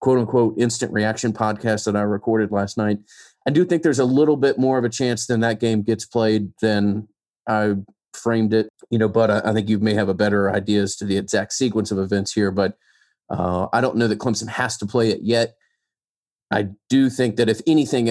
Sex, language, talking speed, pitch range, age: male, English, 220 wpm, 100-115 Hz, 30-49